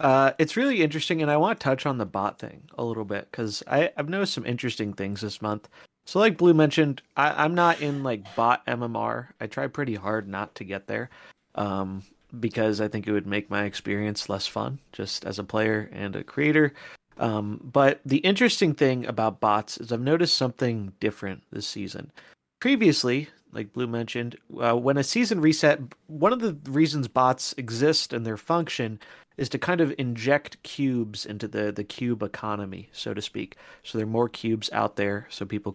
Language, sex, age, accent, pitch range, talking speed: English, male, 30-49, American, 110-145 Hz, 195 wpm